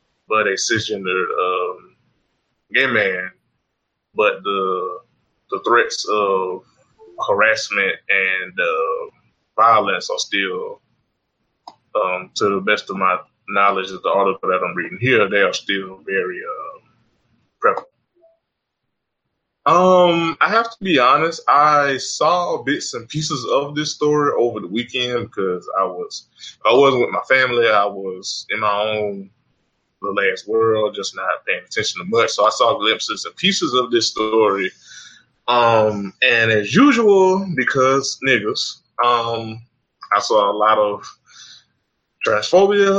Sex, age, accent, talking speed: male, 20-39, American, 135 wpm